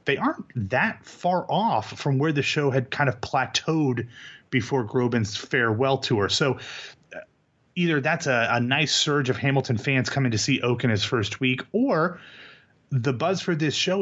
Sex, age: male, 30-49